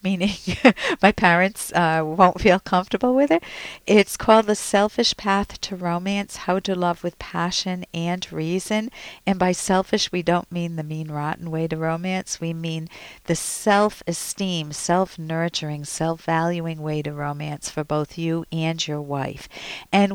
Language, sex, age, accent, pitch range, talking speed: English, female, 50-69, American, 160-200 Hz, 150 wpm